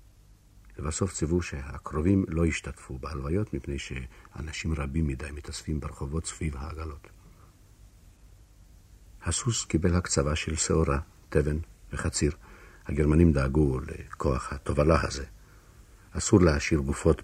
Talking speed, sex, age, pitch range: 100 wpm, male, 60-79, 75-100 Hz